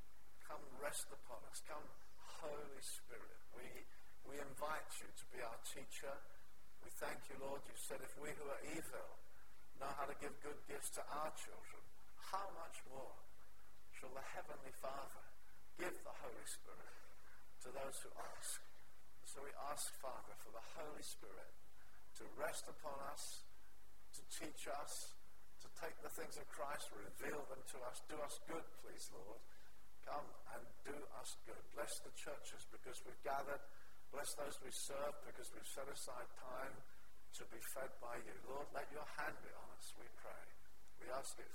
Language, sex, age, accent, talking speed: English, male, 50-69, British, 170 wpm